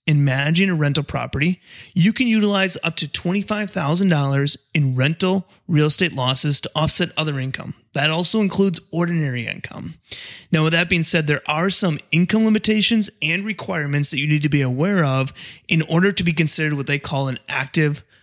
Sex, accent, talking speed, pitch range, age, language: male, American, 180 wpm, 145-175 Hz, 30-49, English